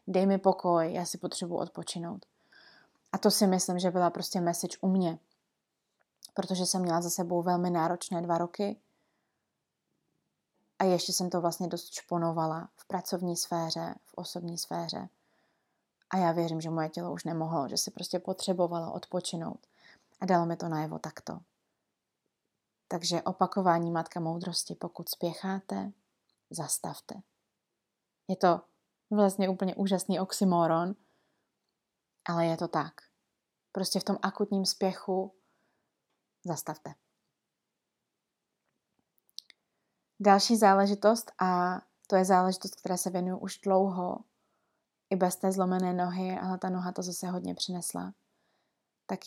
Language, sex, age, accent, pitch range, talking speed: Czech, female, 20-39, native, 175-195 Hz, 130 wpm